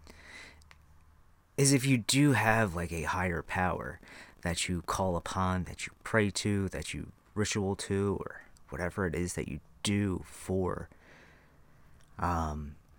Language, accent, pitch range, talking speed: English, American, 80-110 Hz, 140 wpm